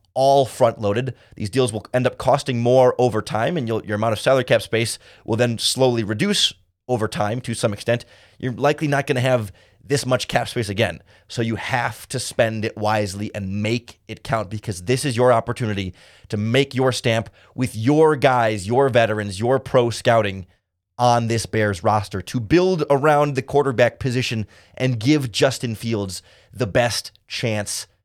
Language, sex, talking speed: English, male, 180 wpm